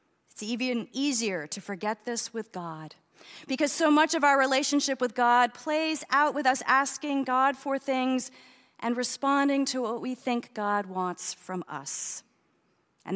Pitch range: 190-255 Hz